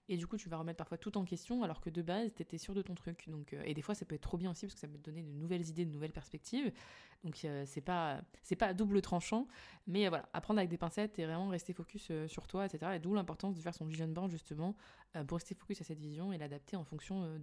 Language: French